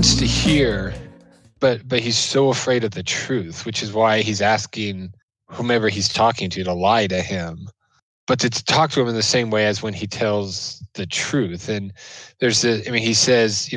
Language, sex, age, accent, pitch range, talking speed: English, male, 20-39, American, 105-125 Hz, 200 wpm